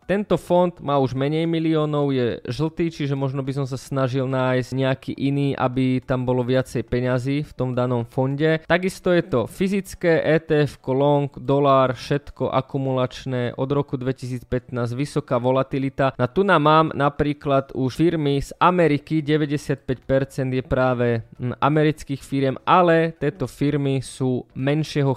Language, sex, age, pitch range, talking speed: Slovak, male, 20-39, 130-155 Hz, 140 wpm